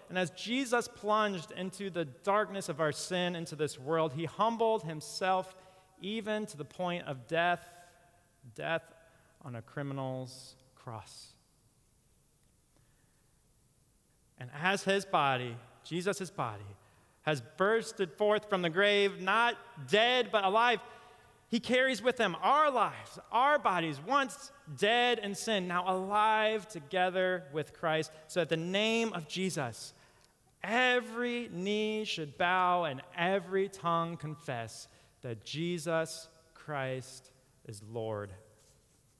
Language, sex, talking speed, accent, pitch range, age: English, male, 120 wpm, American, 130-195 Hz, 30-49